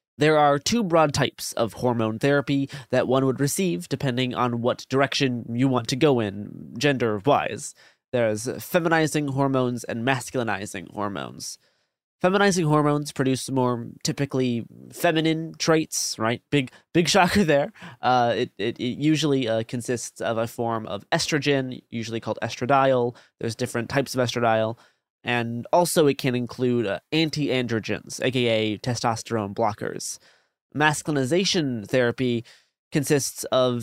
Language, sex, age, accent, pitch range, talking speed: English, male, 20-39, American, 120-155 Hz, 130 wpm